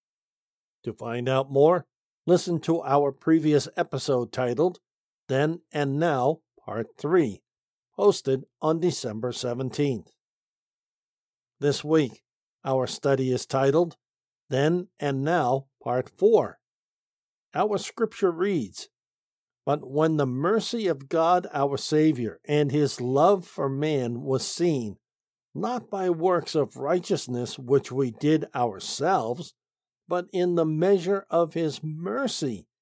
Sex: male